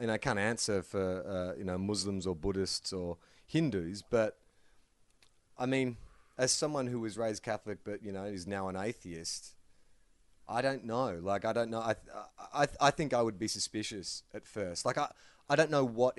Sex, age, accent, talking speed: male, 30-49, Australian, 200 wpm